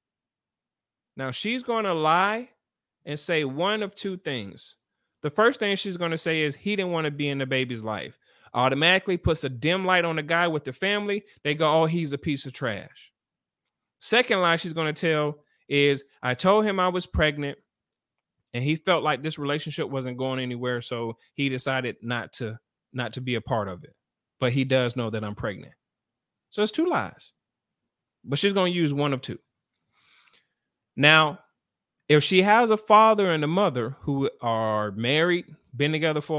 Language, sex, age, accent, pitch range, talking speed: English, male, 30-49, American, 125-175 Hz, 190 wpm